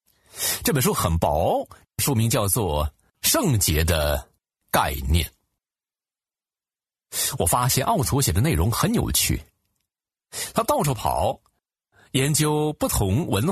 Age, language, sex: 50-69, Chinese, male